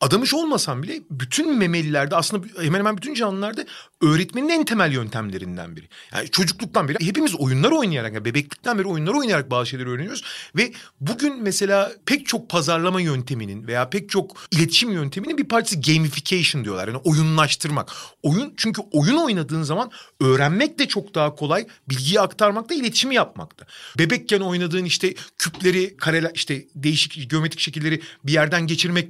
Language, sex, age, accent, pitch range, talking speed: Turkish, male, 40-59, native, 145-210 Hz, 155 wpm